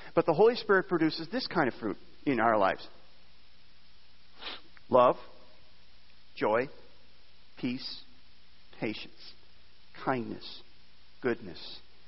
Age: 50-69